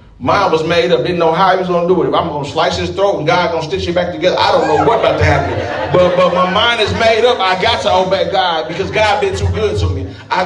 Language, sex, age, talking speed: English, male, 30-49, 300 wpm